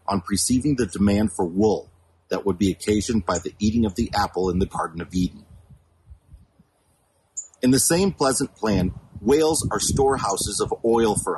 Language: English